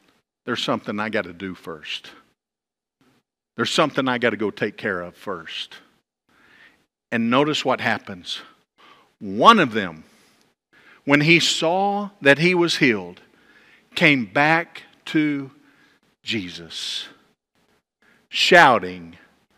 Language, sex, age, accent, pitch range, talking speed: English, male, 50-69, American, 130-175 Hz, 110 wpm